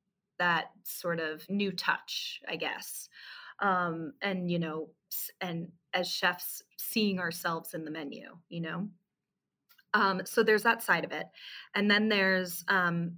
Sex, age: female, 30-49